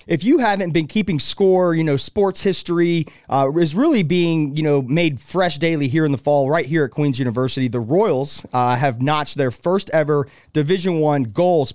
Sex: male